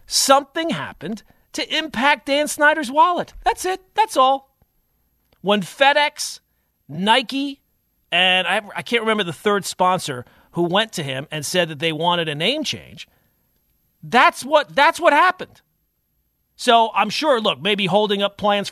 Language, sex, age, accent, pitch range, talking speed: English, male, 40-59, American, 165-220 Hz, 145 wpm